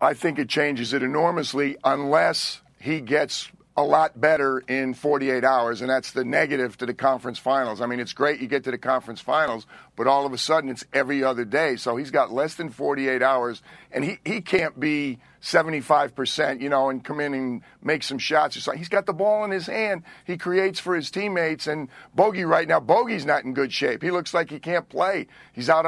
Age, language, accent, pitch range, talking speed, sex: 50-69, English, American, 135-165 Hz, 220 wpm, male